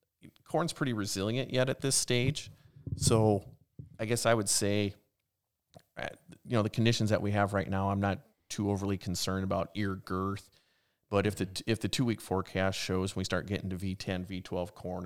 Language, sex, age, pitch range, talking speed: English, male, 30-49, 95-105 Hz, 185 wpm